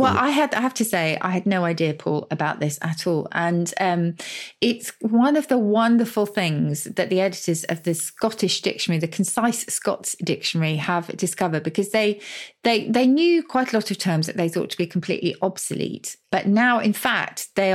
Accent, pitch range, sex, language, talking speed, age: British, 170-215 Hz, female, English, 200 wpm, 30-49